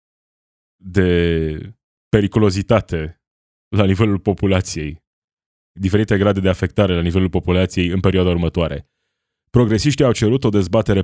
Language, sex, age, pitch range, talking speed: Romanian, male, 20-39, 90-110 Hz, 110 wpm